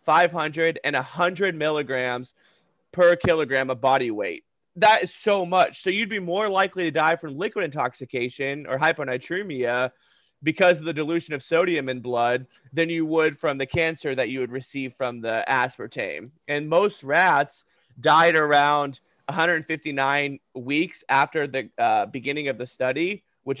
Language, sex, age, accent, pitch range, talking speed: English, male, 30-49, American, 140-170 Hz, 155 wpm